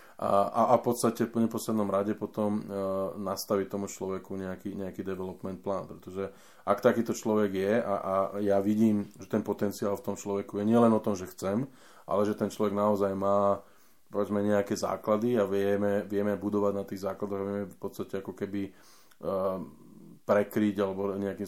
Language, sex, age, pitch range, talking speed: Slovak, male, 20-39, 100-105 Hz, 180 wpm